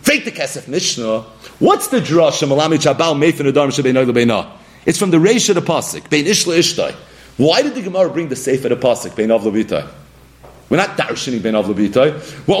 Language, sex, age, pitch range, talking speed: English, male, 40-59, 165-265 Hz, 130 wpm